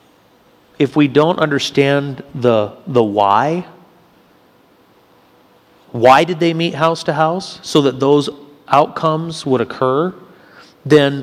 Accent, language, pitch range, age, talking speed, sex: American, English, 120-160 Hz, 40-59, 110 wpm, male